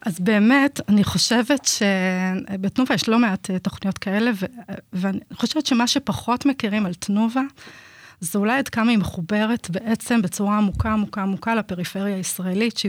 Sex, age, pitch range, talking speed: female, 30-49, 195-235 Hz, 145 wpm